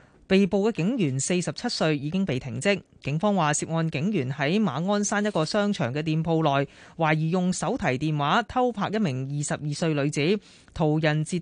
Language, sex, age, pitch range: Chinese, female, 30-49, 140-190 Hz